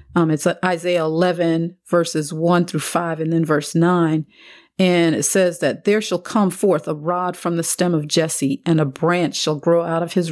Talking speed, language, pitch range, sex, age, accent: 205 wpm, English, 155-180 Hz, female, 40-59, American